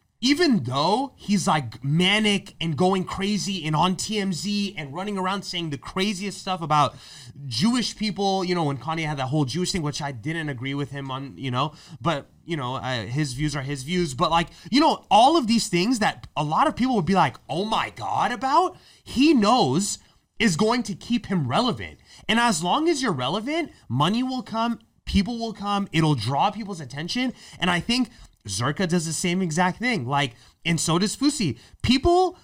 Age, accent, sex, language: 30-49, American, male, English